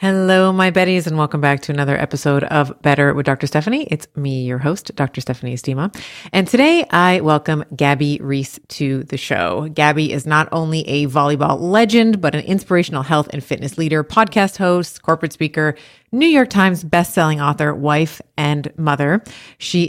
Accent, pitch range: American, 145-185 Hz